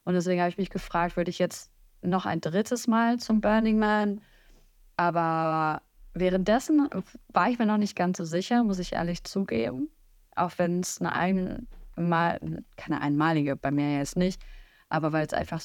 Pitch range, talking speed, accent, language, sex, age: 160-195 Hz, 175 wpm, German, German, female, 20-39